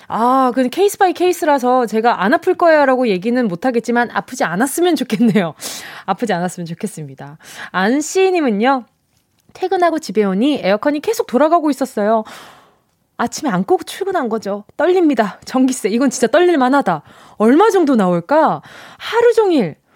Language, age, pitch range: Korean, 20-39, 205-320 Hz